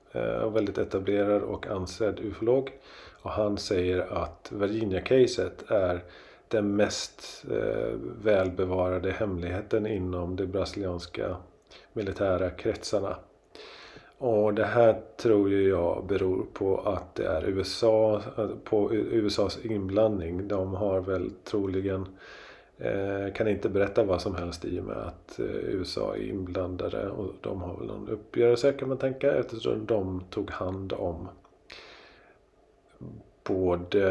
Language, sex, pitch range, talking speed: Swedish, male, 95-105 Hz, 120 wpm